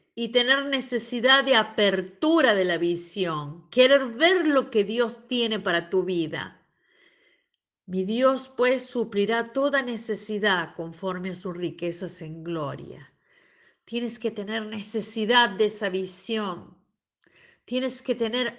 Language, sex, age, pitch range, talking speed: Spanish, female, 50-69, 190-260 Hz, 125 wpm